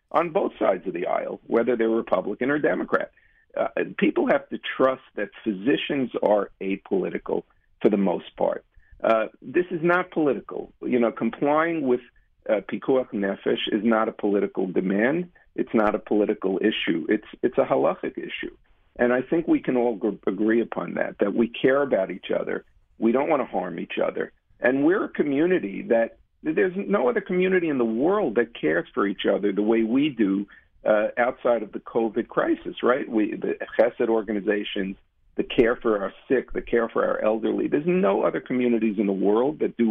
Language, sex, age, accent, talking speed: English, male, 50-69, American, 185 wpm